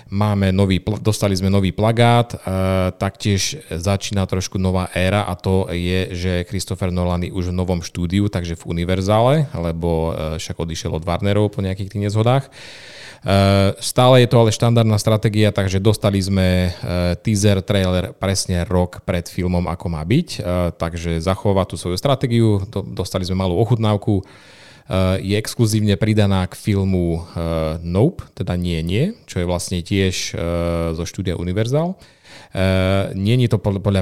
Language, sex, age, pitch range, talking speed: Slovak, male, 30-49, 90-105 Hz, 145 wpm